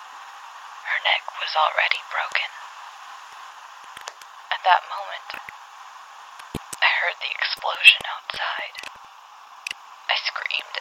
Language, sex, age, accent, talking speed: English, female, 20-39, American, 80 wpm